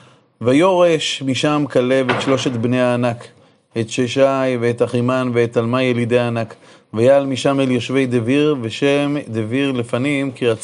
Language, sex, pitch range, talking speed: Hebrew, male, 120-145 Hz, 135 wpm